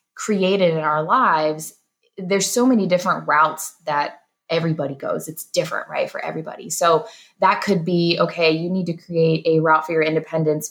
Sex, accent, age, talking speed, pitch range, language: female, American, 20-39, 175 wpm, 155-185 Hz, English